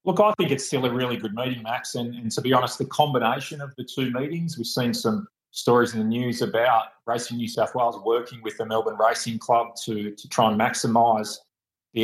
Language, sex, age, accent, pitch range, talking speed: English, male, 30-49, Australian, 110-135 Hz, 225 wpm